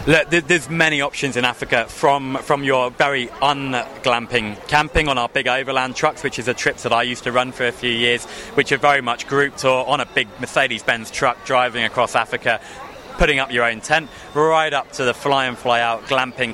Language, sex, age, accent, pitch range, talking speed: English, male, 20-39, British, 125-145 Hz, 215 wpm